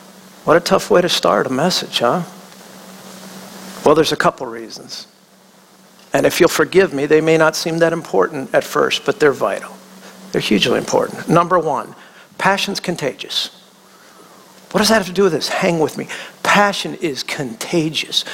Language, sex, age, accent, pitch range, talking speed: English, male, 50-69, American, 170-225 Hz, 165 wpm